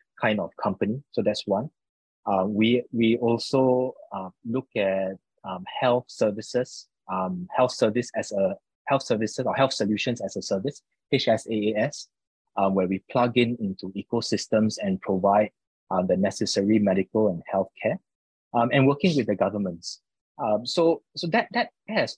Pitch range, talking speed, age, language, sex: 105-135 Hz, 155 wpm, 20-39, English, male